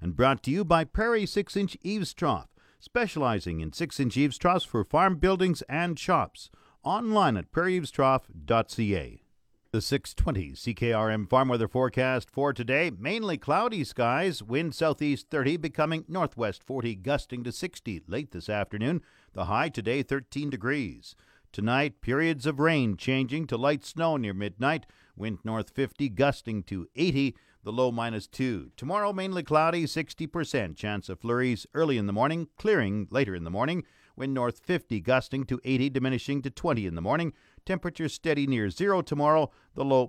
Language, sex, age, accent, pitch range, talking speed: English, male, 50-69, American, 110-155 Hz, 155 wpm